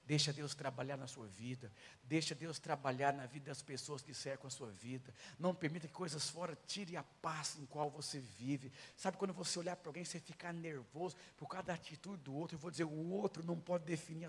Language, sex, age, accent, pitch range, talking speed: Portuguese, male, 50-69, Brazilian, 125-170 Hz, 225 wpm